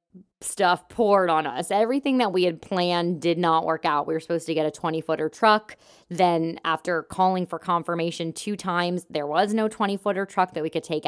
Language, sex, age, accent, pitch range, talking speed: English, female, 20-39, American, 165-200 Hz, 210 wpm